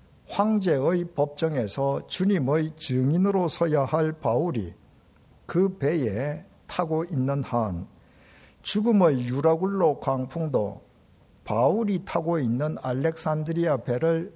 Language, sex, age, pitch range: Korean, male, 50-69, 125-175 Hz